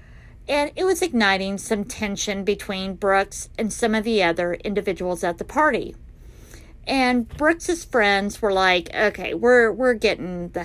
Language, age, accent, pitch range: English, 50-69, American, 180-240 Hz